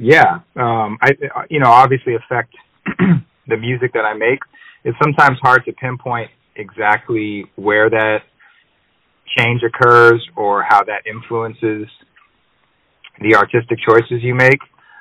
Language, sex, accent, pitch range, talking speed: English, male, American, 105-130 Hz, 125 wpm